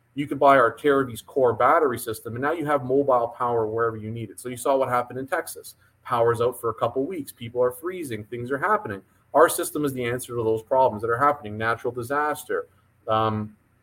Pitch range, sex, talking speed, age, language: 115-135 Hz, male, 220 wpm, 30-49, English